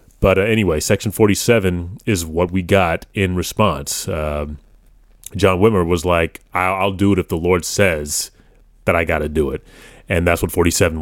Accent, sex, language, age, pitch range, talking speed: American, male, English, 30-49, 80-95 Hz, 185 wpm